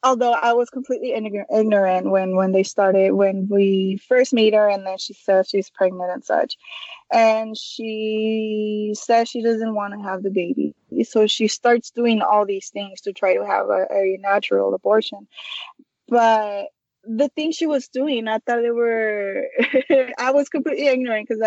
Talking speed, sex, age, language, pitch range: 175 wpm, female, 20-39, English, 200-245 Hz